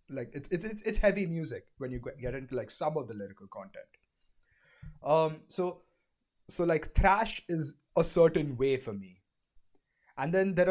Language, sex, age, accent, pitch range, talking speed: English, male, 20-39, Indian, 130-175 Hz, 175 wpm